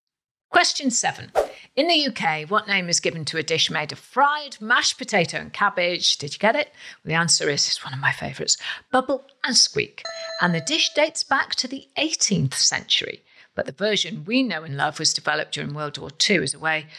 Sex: female